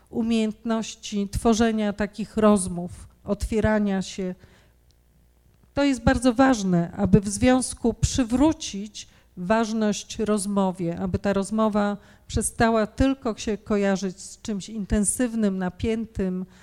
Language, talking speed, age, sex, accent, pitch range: Polish, 95 wpm, 40-59, female, native, 195-220 Hz